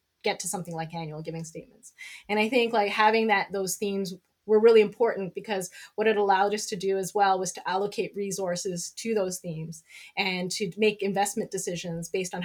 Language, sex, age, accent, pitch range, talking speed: English, female, 20-39, American, 180-210 Hz, 200 wpm